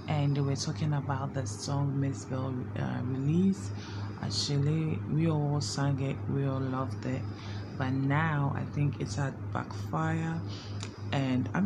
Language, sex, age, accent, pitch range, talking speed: English, female, 20-39, Nigerian, 100-150 Hz, 145 wpm